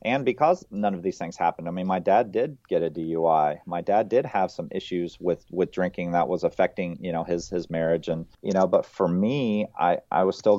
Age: 30-49